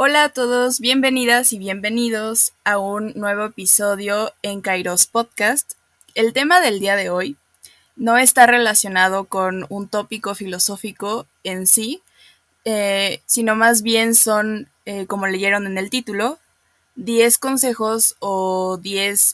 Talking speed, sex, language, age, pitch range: 135 wpm, female, Spanish, 20-39, 200-235 Hz